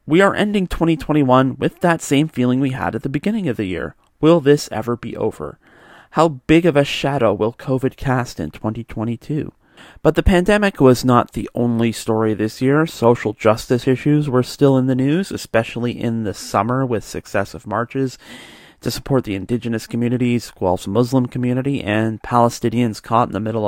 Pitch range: 110-140 Hz